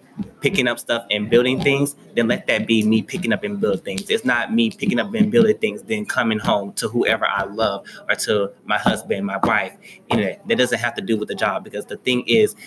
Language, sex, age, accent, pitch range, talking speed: English, male, 20-39, American, 105-145 Hz, 240 wpm